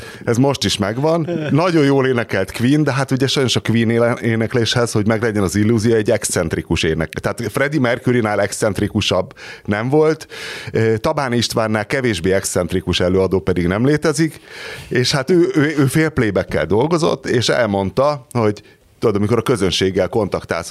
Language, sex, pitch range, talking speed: Hungarian, male, 105-140 Hz, 150 wpm